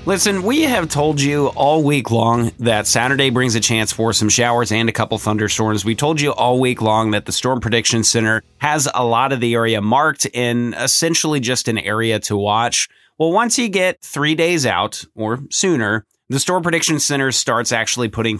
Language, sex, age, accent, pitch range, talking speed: English, male, 30-49, American, 110-150 Hz, 200 wpm